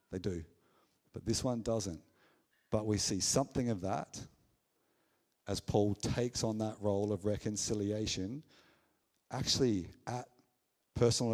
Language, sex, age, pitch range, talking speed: English, male, 50-69, 105-130 Hz, 120 wpm